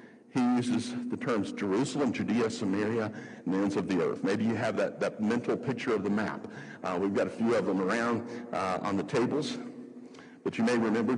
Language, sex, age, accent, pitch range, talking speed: English, male, 60-79, American, 110-175 Hz, 205 wpm